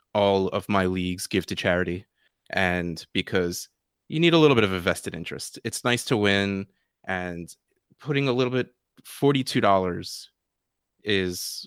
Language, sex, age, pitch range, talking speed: English, male, 30-49, 90-105 Hz, 150 wpm